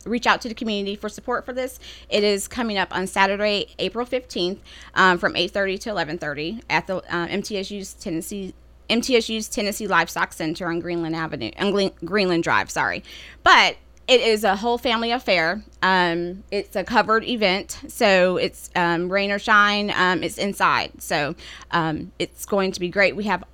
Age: 20-39